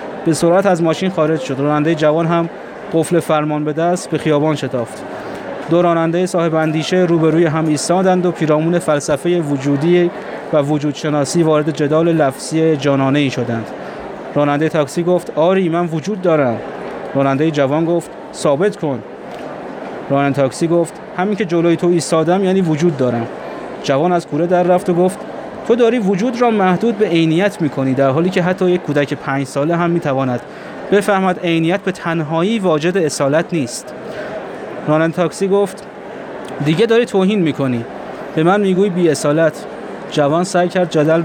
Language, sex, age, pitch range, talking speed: Persian, male, 30-49, 145-185 Hz, 155 wpm